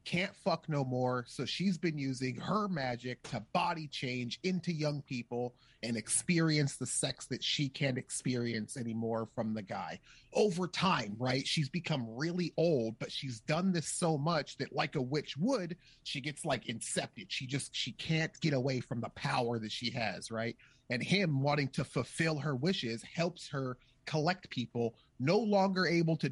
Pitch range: 125-165 Hz